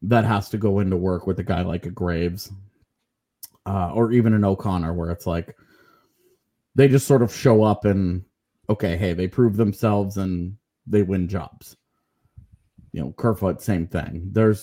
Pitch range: 95-125 Hz